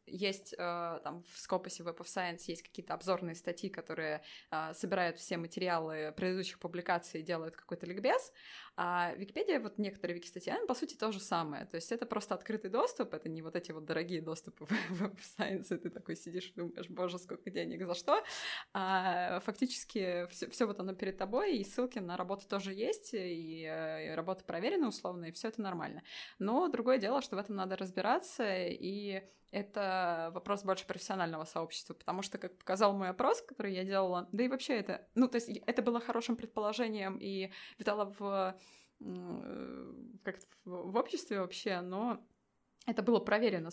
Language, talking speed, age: Russian, 170 wpm, 20-39